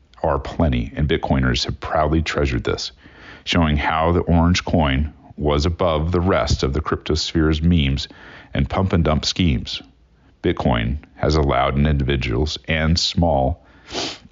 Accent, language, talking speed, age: American, English, 140 wpm, 40-59